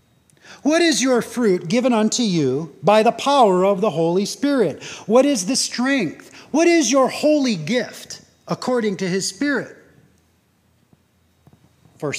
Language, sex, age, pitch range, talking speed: English, male, 40-59, 165-235 Hz, 140 wpm